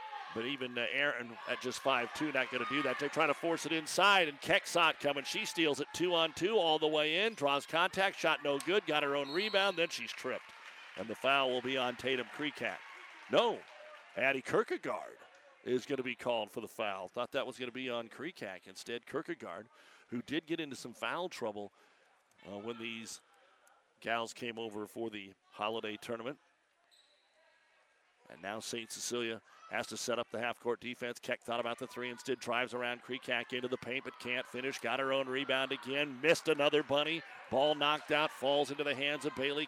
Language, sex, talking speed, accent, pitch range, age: English, male, 195 wpm, American, 120-150 Hz, 50-69